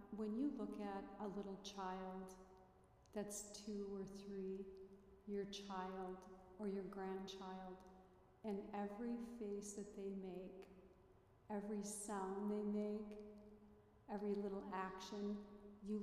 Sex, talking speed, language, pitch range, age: female, 110 wpm, English, 185-205 Hz, 40-59